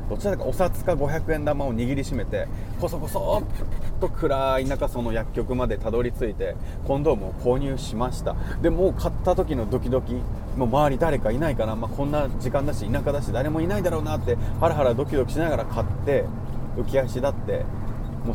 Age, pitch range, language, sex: 30-49, 100-135 Hz, Japanese, male